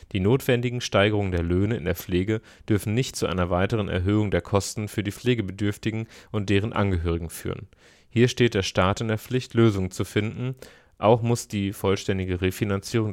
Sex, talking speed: male, 175 wpm